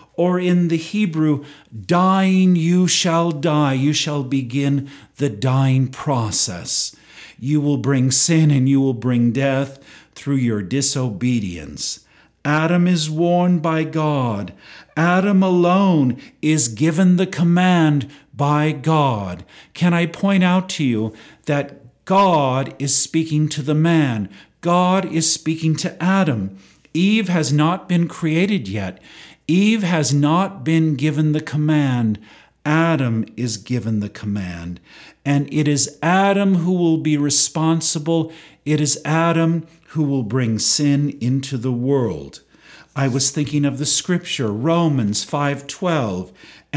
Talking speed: 130 wpm